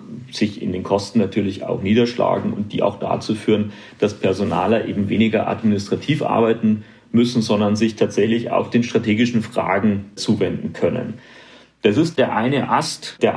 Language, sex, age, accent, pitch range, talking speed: German, male, 40-59, German, 110-130 Hz, 155 wpm